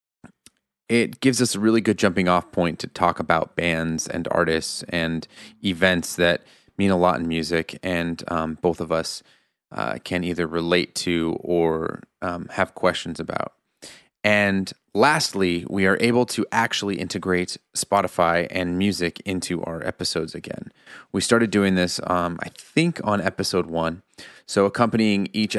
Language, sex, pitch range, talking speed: English, male, 85-100 Hz, 155 wpm